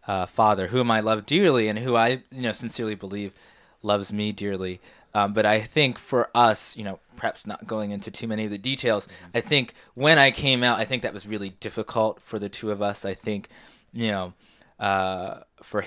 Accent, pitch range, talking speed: American, 100-125 Hz, 210 wpm